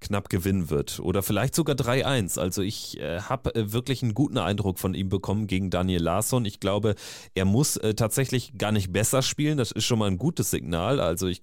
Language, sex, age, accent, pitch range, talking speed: German, male, 30-49, German, 95-120 Hz, 210 wpm